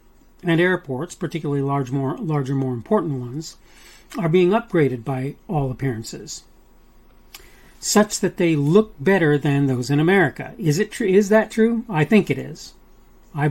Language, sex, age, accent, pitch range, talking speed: English, male, 40-59, American, 140-185 Hz, 155 wpm